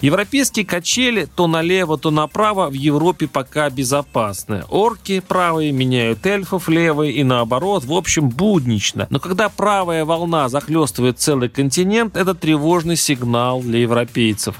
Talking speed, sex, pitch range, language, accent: 130 wpm, male, 120-170 Hz, Russian, native